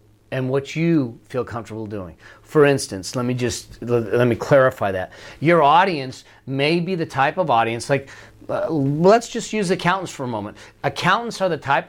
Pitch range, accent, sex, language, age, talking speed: 125-165 Hz, American, male, English, 40-59, 180 wpm